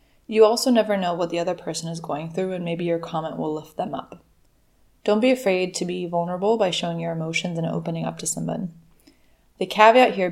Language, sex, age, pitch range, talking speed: English, female, 20-39, 165-200 Hz, 215 wpm